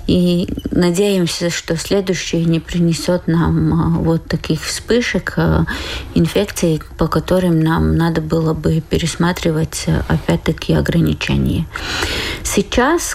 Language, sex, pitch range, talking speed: Russian, female, 155-185 Hz, 95 wpm